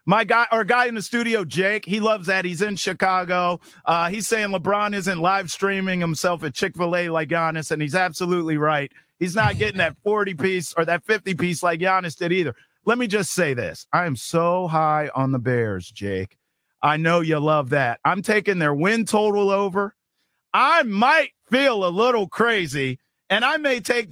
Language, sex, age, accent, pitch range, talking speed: English, male, 40-59, American, 175-230 Hz, 195 wpm